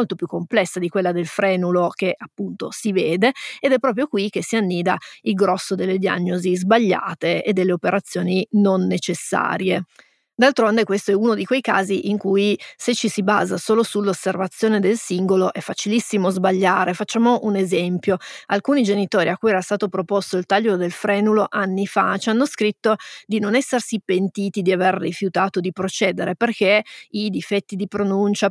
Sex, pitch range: female, 190-220 Hz